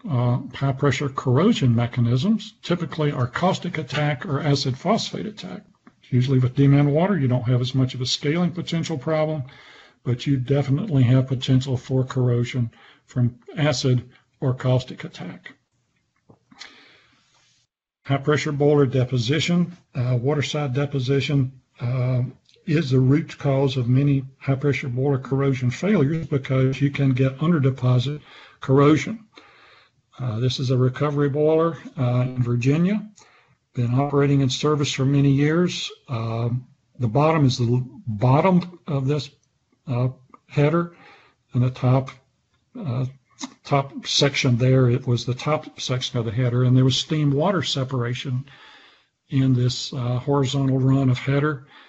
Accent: American